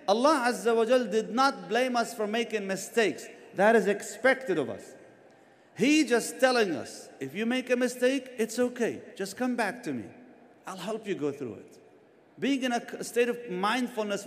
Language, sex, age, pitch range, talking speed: English, male, 50-69, 195-270 Hz, 185 wpm